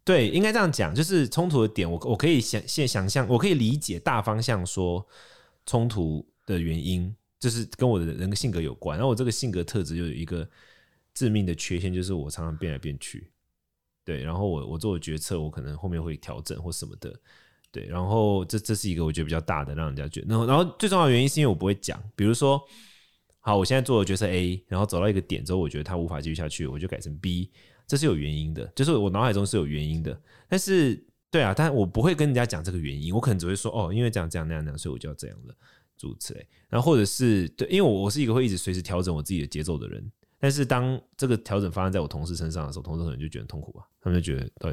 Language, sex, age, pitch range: Chinese, male, 20-39, 85-120 Hz